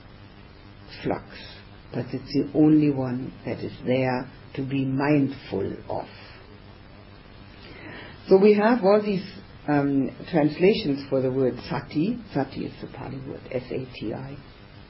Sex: female